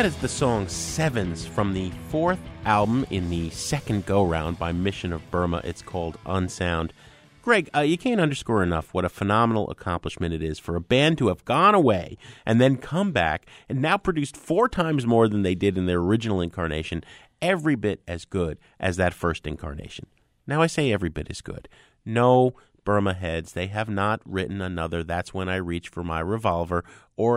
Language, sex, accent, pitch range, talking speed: English, male, American, 90-140 Hz, 190 wpm